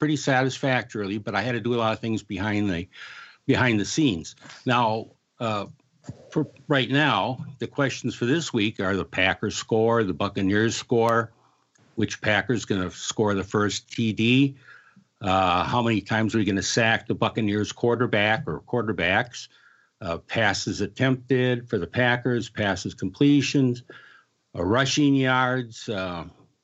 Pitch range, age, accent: 105-130 Hz, 60-79, American